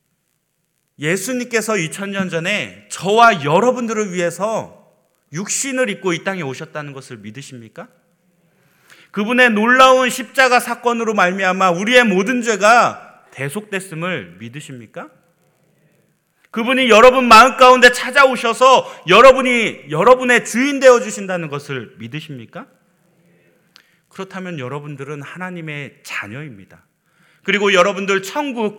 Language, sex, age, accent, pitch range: Korean, male, 30-49, native, 160-230 Hz